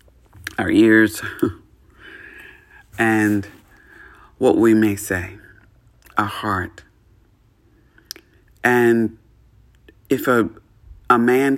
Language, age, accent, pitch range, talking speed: English, 50-69, American, 105-115 Hz, 75 wpm